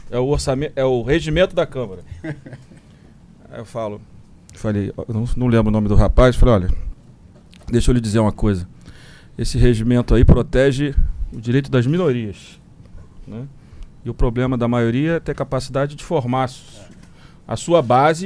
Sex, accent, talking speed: male, Brazilian, 165 wpm